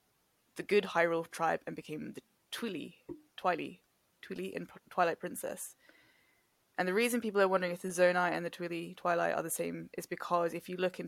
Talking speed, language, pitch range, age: 190 wpm, English, 165-185 Hz, 10-29